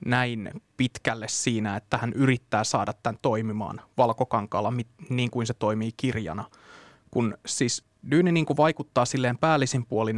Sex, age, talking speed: male, 20-39, 140 wpm